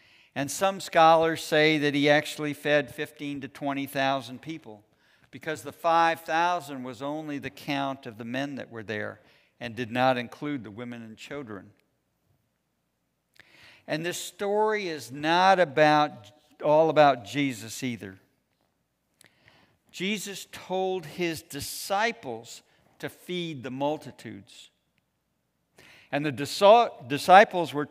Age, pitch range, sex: 50-69, 130-165 Hz, male